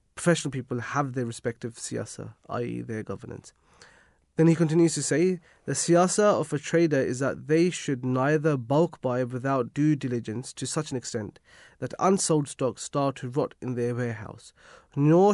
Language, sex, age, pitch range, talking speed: English, male, 30-49, 125-160 Hz, 170 wpm